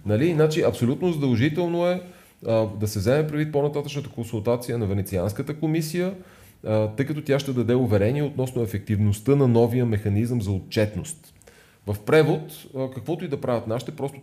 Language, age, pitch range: Bulgarian, 30-49, 105-145 Hz